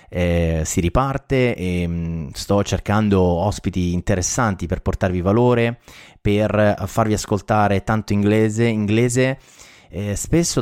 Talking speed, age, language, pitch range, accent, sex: 105 wpm, 30-49, Italian, 95-115 Hz, native, male